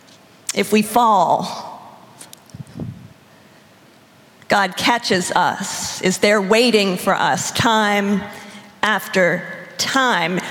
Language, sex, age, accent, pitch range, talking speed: English, female, 50-69, American, 200-240 Hz, 80 wpm